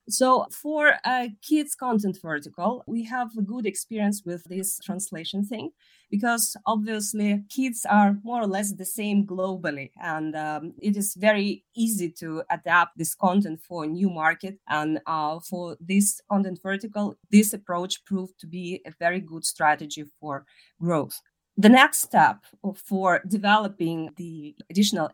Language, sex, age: English, female, 30-49